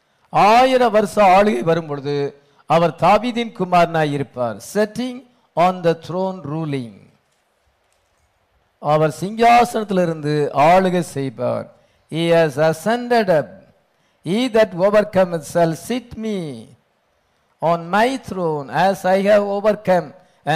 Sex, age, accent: male, 50-69, Indian